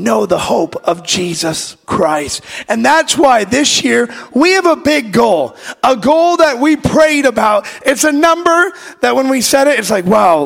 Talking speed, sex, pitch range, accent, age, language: 190 wpm, male, 165-250 Hz, American, 30-49, English